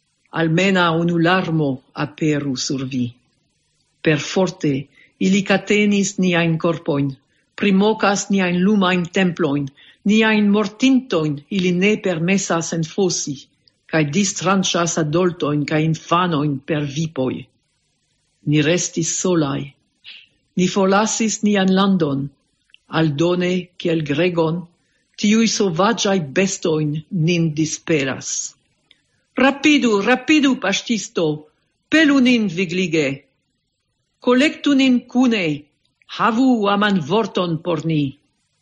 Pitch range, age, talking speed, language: 155-200 Hz, 50-69, 90 wpm, English